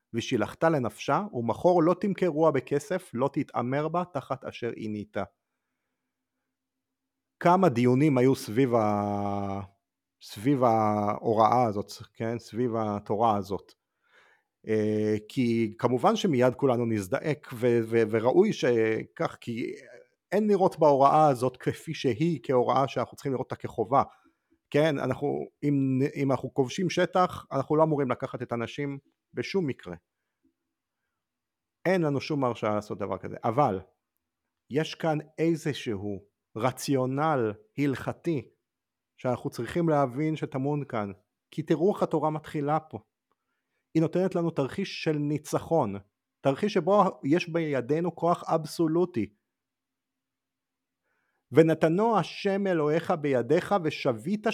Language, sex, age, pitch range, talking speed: Hebrew, male, 40-59, 115-165 Hz, 110 wpm